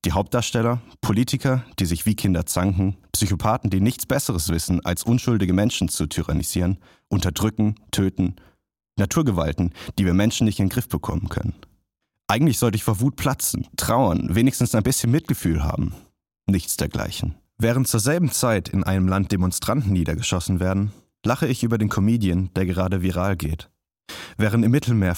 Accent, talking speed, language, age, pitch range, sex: German, 155 wpm, German, 30-49, 90-115 Hz, male